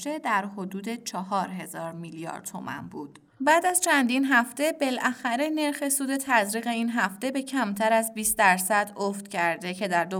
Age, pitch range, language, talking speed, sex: 30-49, 190-245 Hz, Persian, 165 wpm, female